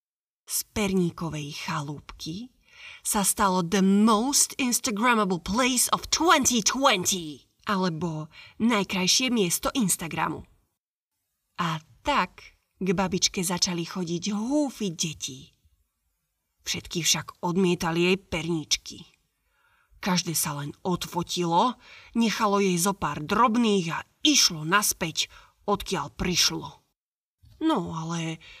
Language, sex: Slovak, female